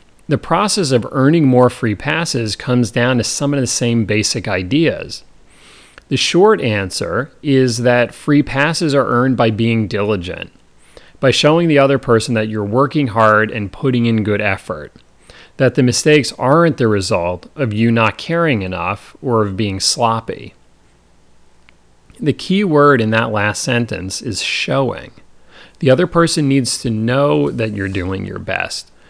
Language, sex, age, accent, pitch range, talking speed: English, male, 30-49, American, 105-140 Hz, 160 wpm